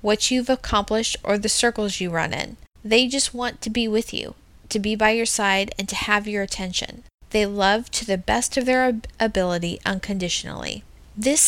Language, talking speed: English, 190 wpm